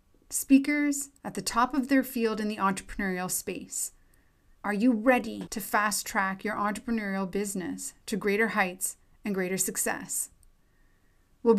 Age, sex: 30-49, female